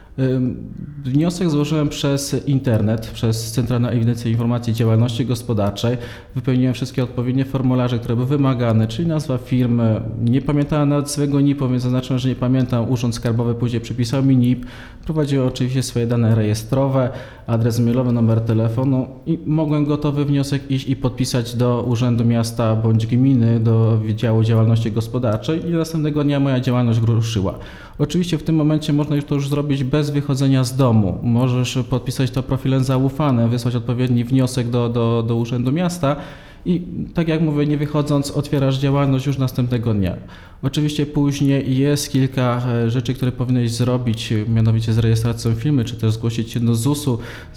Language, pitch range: Polish, 115-135 Hz